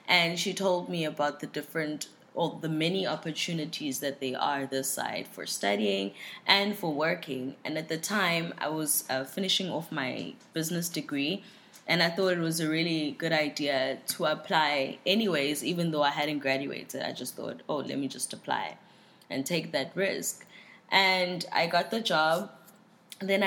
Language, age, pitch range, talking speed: English, 20-39, 150-205 Hz, 175 wpm